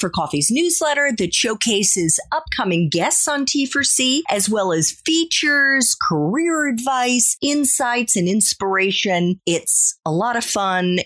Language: English